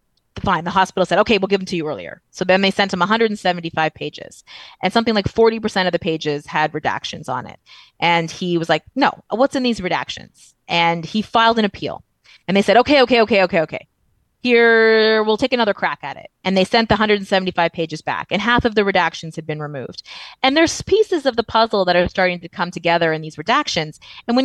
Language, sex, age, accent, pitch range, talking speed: English, female, 20-39, American, 165-220 Hz, 225 wpm